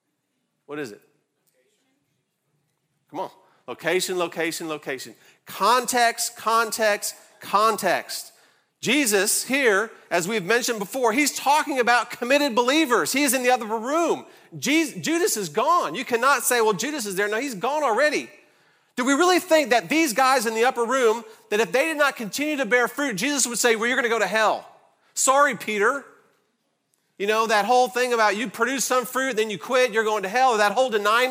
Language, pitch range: English, 210-270 Hz